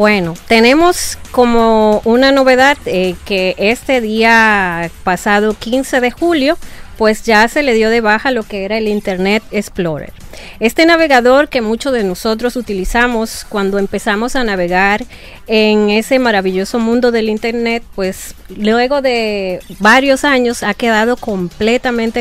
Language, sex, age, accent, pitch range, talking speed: Spanish, female, 30-49, American, 210-260 Hz, 140 wpm